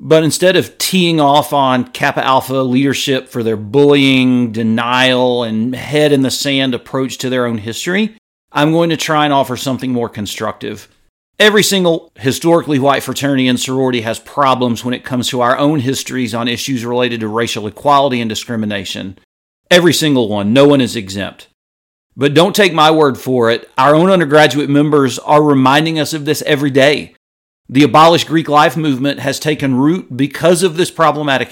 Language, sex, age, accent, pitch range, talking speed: English, male, 40-59, American, 125-165 Hz, 170 wpm